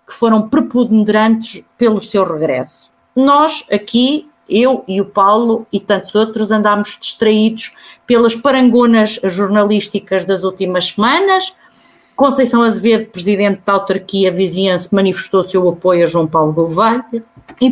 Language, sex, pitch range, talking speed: Portuguese, female, 200-240 Hz, 125 wpm